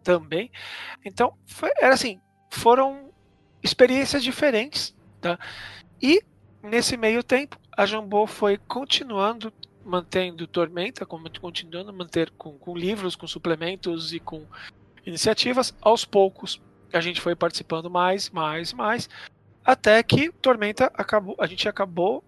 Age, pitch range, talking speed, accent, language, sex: 40-59, 175-235 Hz, 125 wpm, Brazilian, Portuguese, male